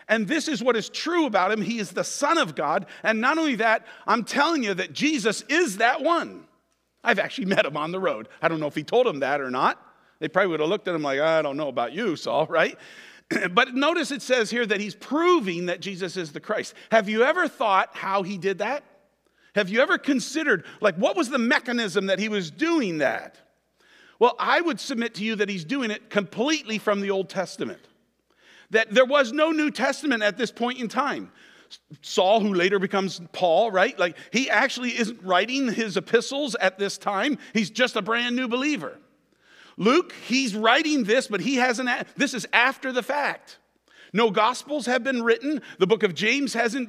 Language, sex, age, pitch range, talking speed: English, male, 50-69, 205-275 Hz, 210 wpm